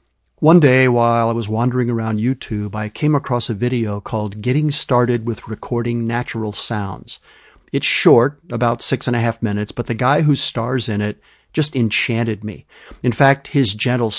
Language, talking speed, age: English, 180 wpm, 50-69